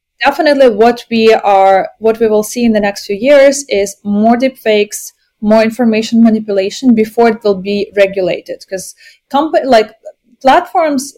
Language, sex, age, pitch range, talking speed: English, female, 20-39, 205-255 Hz, 155 wpm